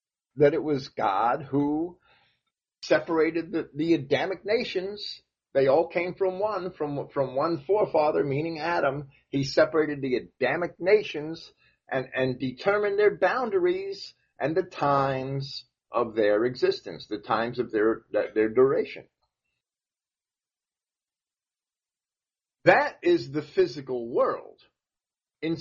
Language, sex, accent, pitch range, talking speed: English, male, American, 145-230 Hz, 115 wpm